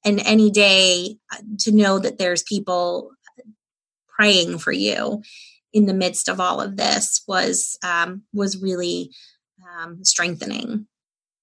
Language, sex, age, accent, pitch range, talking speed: English, female, 20-39, American, 180-220 Hz, 125 wpm